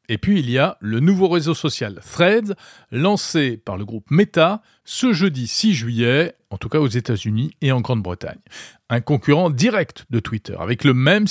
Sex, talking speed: male, 185 wpm